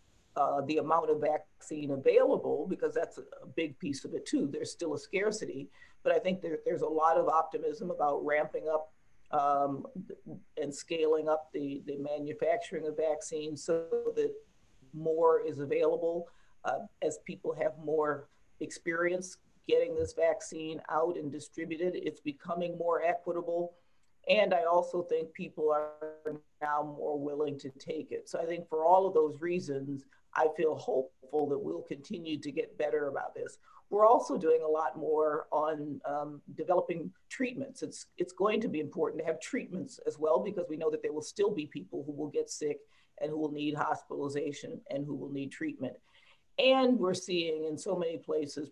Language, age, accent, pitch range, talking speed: English, 50-69, American, 150-220 Hz, 175 wpm